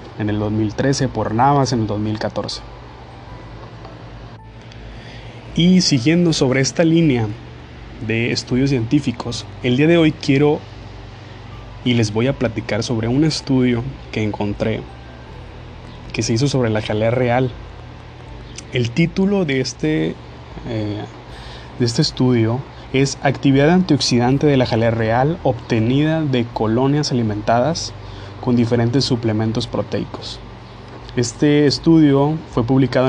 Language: Spanish